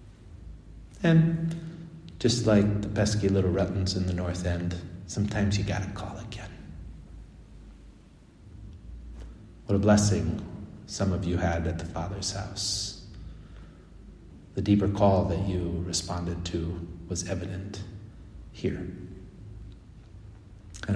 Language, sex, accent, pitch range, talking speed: English, male, American, 90-105 Hz, 110 wpm